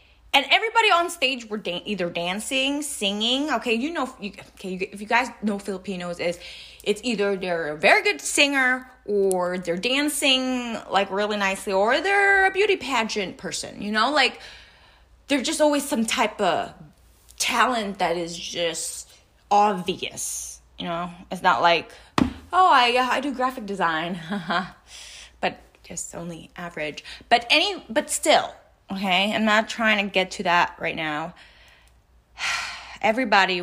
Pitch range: 170-245 Hz